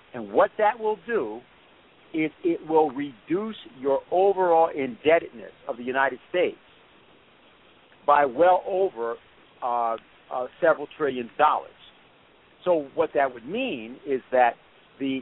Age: 50-69